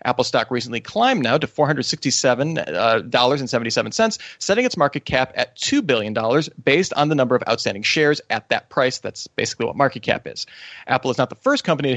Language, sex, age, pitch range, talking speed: English, male, 30-49, 125-170 Hz, 190 wpm